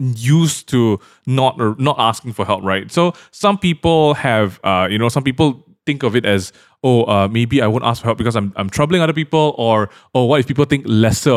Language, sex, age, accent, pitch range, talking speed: English, male, 20-39, Malaysian, 105-150 Hz, 220 wpm